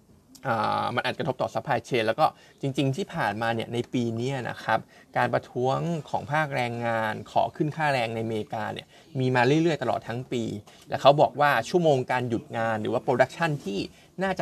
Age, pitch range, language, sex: 20-39, 115-145 Hz, Thai, male